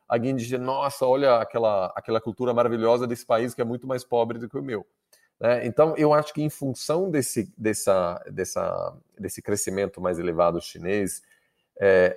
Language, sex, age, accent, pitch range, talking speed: Portuguese, male, 40-59, Brazilian, 110-135 Hz, 175 wpm